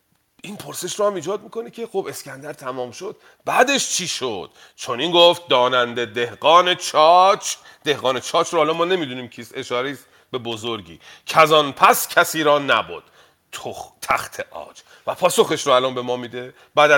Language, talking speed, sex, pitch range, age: Persian, 155 wpm, male, 120-175 Hz, 40-59